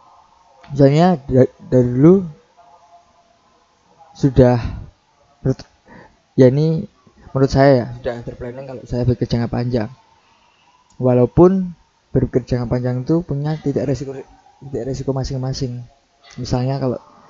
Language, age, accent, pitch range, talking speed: Indonesian, 20-39, native, 125-160 Hz, 95 wpm